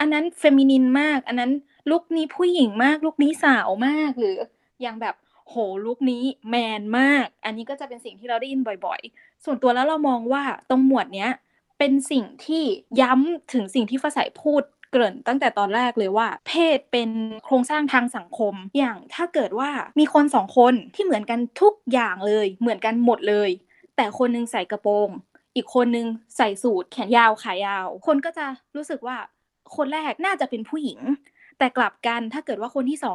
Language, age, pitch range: Thai, 20-39, 235-290 Hz